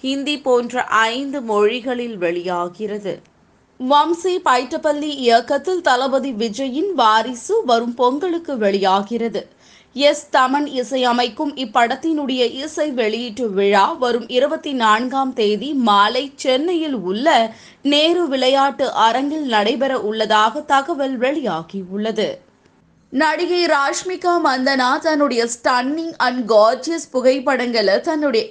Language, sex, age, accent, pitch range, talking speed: Tamil, female, 20-39, native, 235-295 Hz, 90 wpm